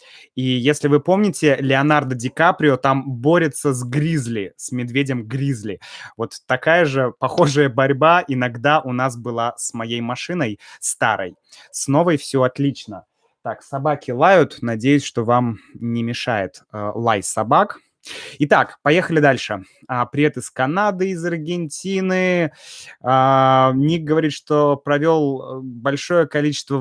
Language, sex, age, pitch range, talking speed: Russian, male, 20-39, 125-150 Hz, 130 wpm